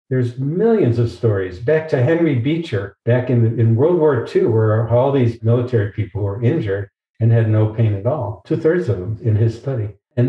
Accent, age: American, 60-79